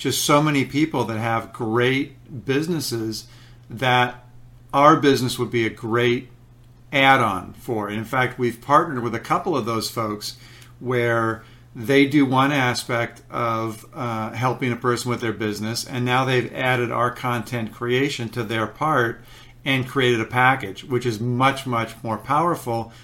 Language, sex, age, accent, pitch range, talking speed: English, male, 50-69, American, 120-135 Hz, 160 wpm